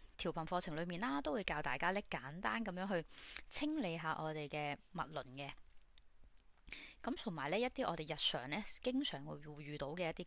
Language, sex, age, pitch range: Chinese, female, 20-39, 150-210 Hz